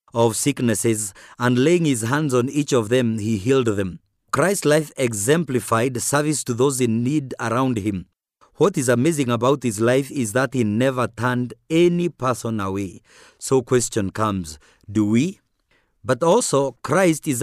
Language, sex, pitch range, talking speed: English, male, 115-145 Hz, 160 wpm